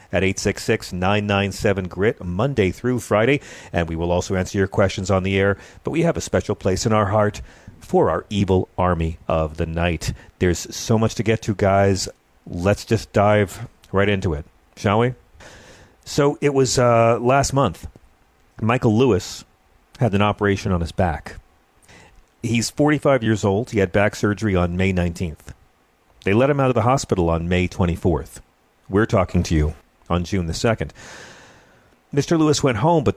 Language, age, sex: English, 40-59, male